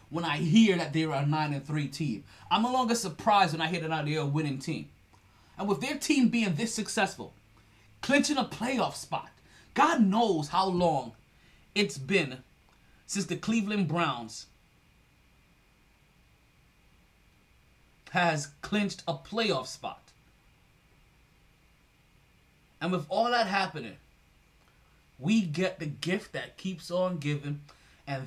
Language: English